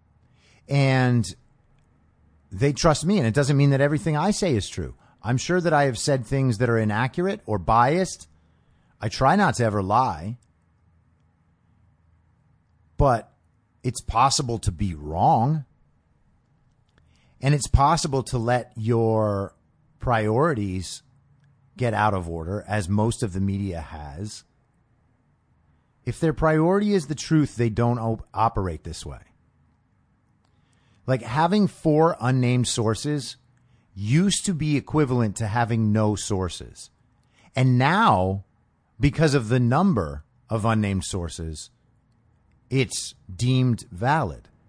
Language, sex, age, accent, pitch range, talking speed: English, male, 30-49, American, 105-145 Hz, 120 wpm